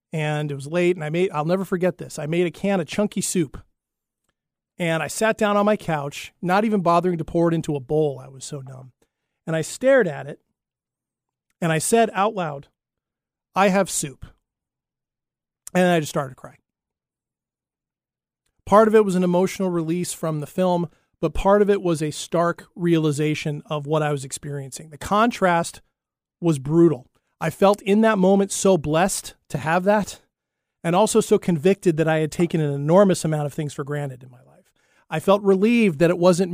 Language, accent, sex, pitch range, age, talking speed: English, American, male, 150-190 Hz, 40-59, 195 wpm